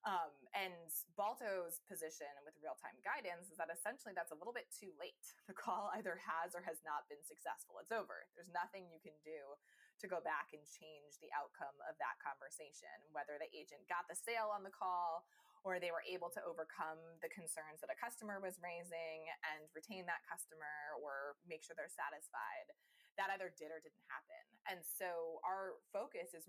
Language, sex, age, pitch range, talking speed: English, female, 20-39, 155-185 Hz, 190 wpm